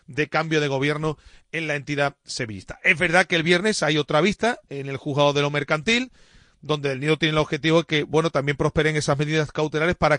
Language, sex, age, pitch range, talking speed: Spanish, male, 40-59, 140-170 Hz, 220 wpm